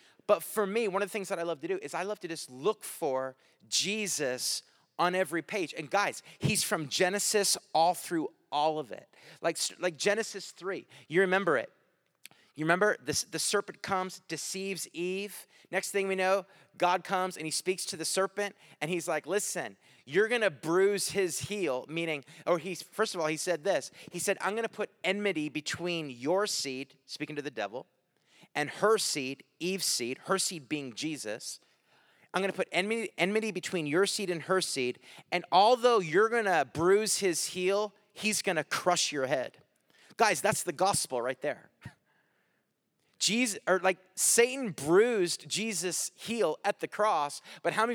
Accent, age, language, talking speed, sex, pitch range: American, 30-49, English, 180 wpm, male, 155-200 Hz